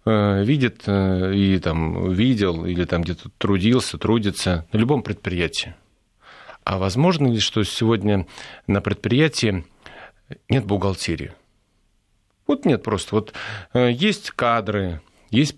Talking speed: 110 wpm